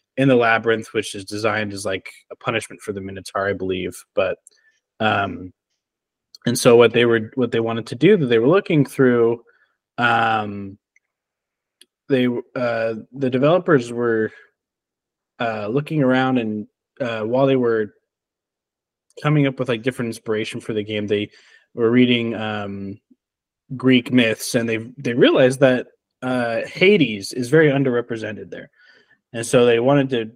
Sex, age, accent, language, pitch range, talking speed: male, 20-39, American, English, 110-130 Hz, 150 wpm